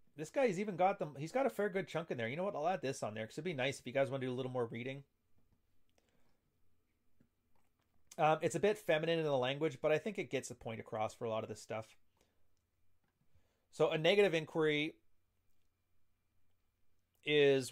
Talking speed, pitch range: 210 wpm, 115-160 Hz